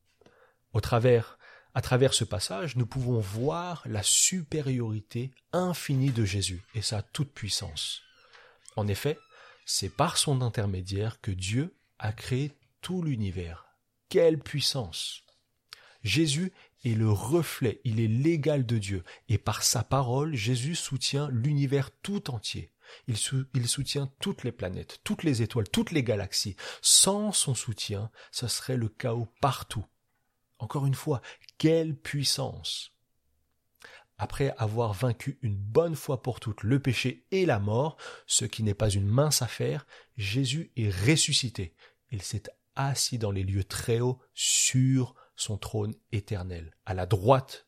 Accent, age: French, 30-49